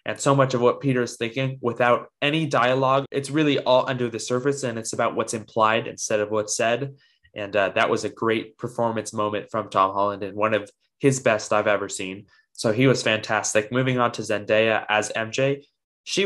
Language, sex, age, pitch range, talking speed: English, male, 20-39, 115-135 Hz, 205 wpm